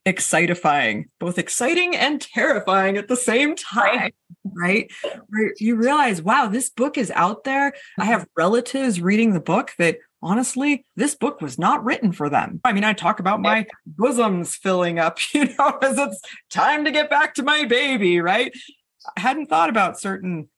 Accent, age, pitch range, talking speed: American, 30-49, 180-245 Hz, 170 wpm